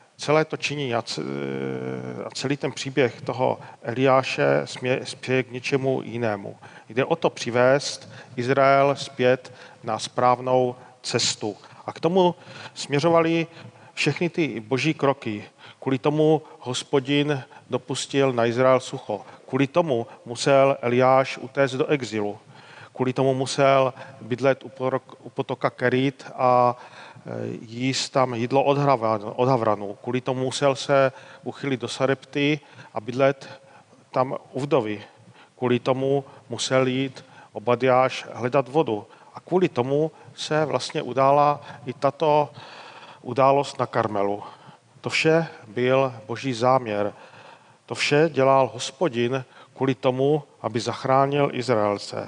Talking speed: 115 wpm